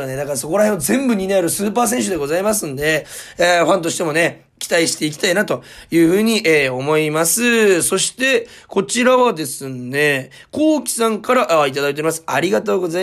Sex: male